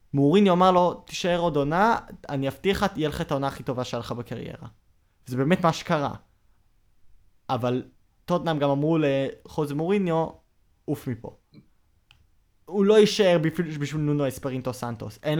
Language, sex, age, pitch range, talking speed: Hebrew, male, 20-39, 120-155 Hz, 150 wpm